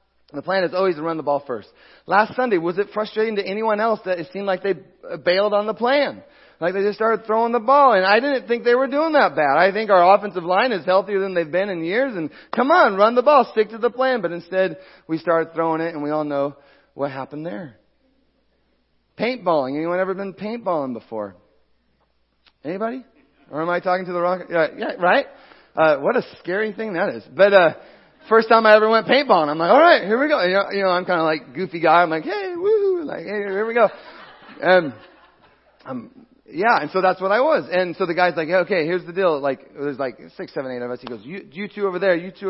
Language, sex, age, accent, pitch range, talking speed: English, male, 40-59, American, 165-220 Hz, 240 wpm